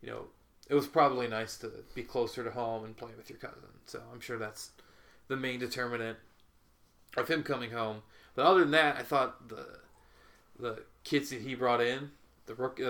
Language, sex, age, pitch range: English, male, 20-39, 110-125 Hz